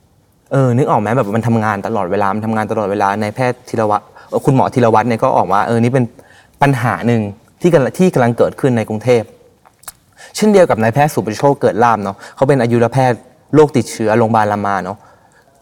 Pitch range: 105-130 Hz